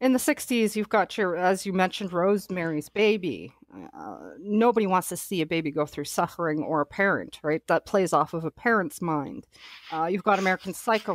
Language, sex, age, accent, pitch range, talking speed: English, female, 40-59, American, 175-215 Hz, 200 wpm